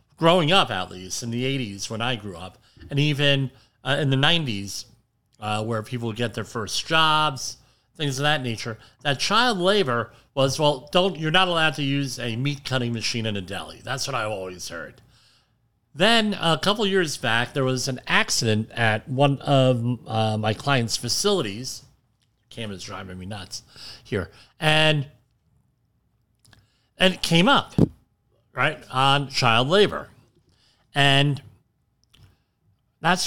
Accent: American